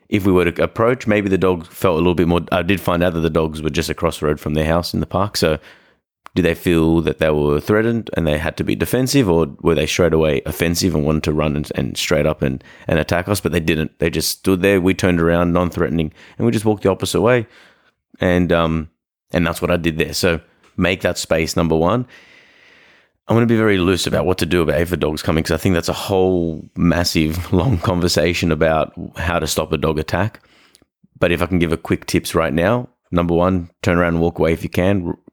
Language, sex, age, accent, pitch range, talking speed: English, male, 30-49, Australian, 80-95 Hz, 245 wpm